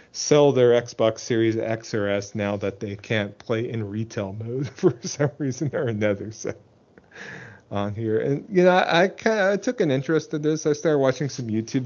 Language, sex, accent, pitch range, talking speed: English, male, American, 105-135 Hz, 200 wpm